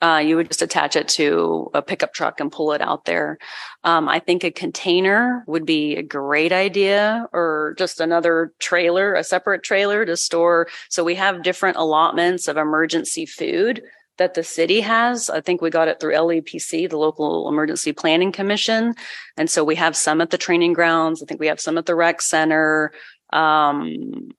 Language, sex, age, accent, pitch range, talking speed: English, female, 30-49, American, 155-180 Hz, 190 wpm